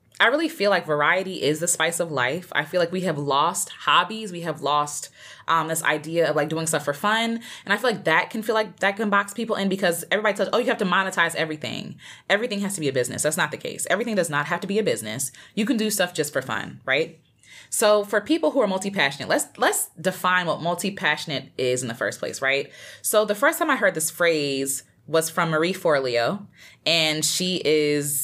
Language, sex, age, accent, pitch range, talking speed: English, female, 20-39, American, 145-195 Hz, 230 wpm